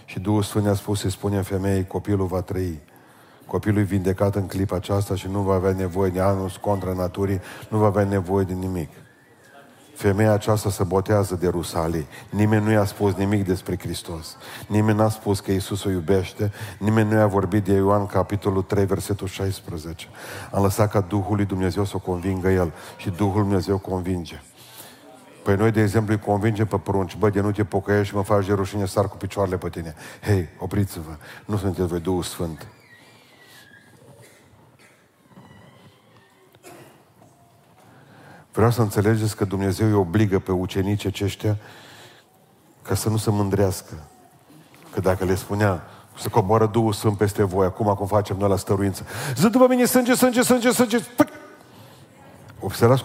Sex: male